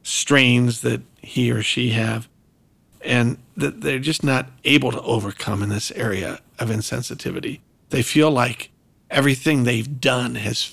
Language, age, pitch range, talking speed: English, 50-69, 125-160 Hz, 145 wpm